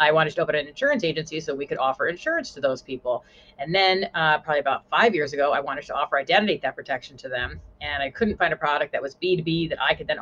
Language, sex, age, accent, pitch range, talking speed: English, female, 30-49, American, 140-180 Hz, 265 wpm